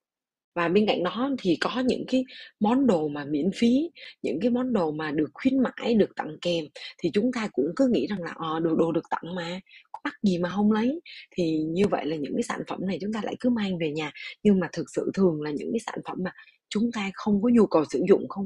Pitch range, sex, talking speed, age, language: 165-230 Hz, female, 255 wpm, 20-39, Vietnamese